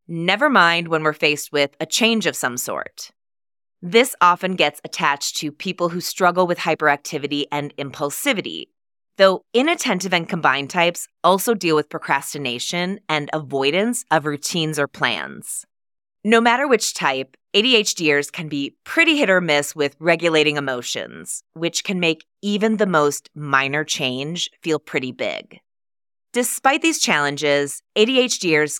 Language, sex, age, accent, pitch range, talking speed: English, female, 20-39, American, 150-210 Hz, 140 wpm